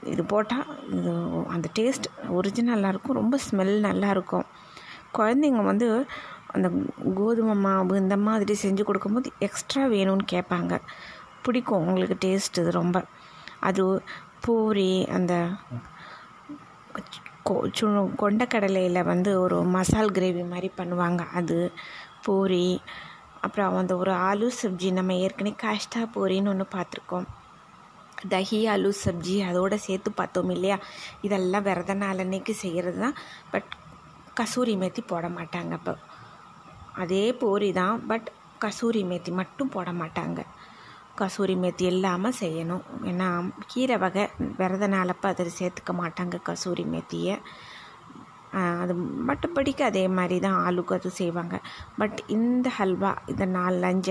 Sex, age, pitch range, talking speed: female, 20-39, 180-215 Hz, 110 wpm